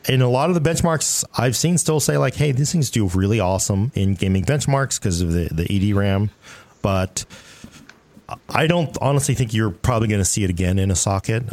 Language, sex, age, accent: English, male, 40-59, American